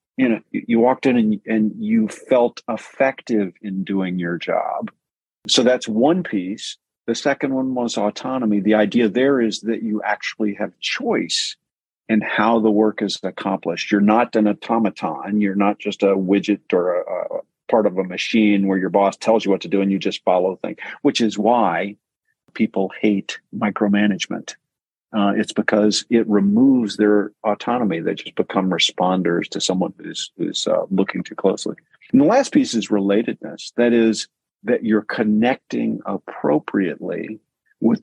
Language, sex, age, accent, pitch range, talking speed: English, male, 50-69, American, 100-125 Hz, 165 wpm